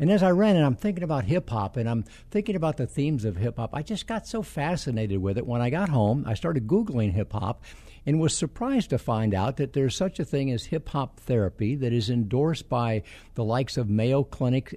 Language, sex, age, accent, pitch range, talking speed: English, male, 60-79, American, 115-165 Hz, 225 wpm